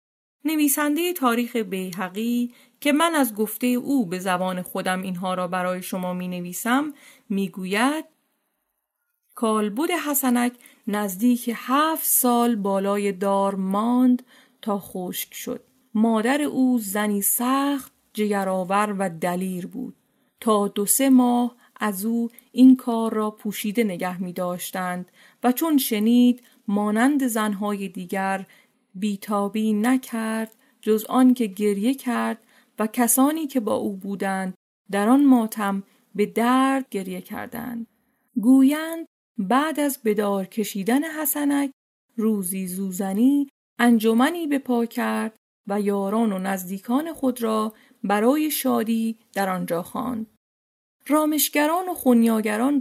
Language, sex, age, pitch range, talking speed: Persian, female, 40-59, 200-260 Hz, 115 wpm